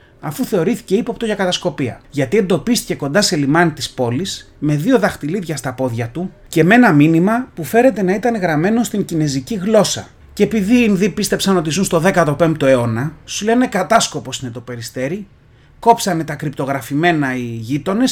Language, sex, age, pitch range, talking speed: Greek, male, 30-49, 140-205 Hz, 160 wpm